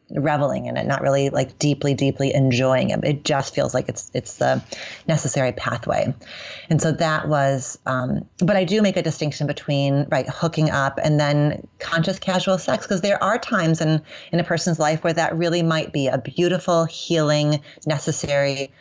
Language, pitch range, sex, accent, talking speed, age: English, 140-170 Hz, female, American, 180 wpm, 30-49